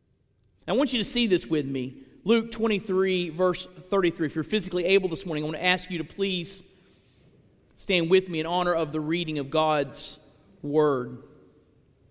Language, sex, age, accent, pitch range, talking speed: English, male, 40-59, American, 130-180 Hz, 180 wpm